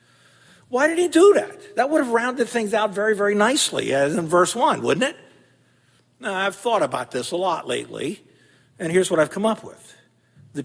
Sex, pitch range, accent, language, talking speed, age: male, 155-230 Hz, American, English, 205 wpm, 50-69